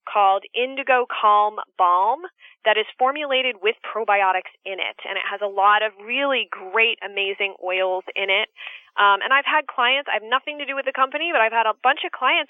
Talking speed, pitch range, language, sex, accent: 205 wpm, 200-265 Hz, English, female, American